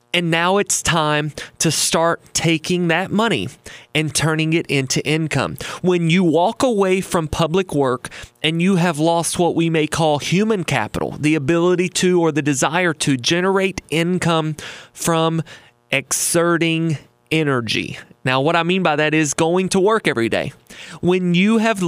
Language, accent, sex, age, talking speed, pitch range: English, American, male, 30-49, 160 wpm, 150-185 Hz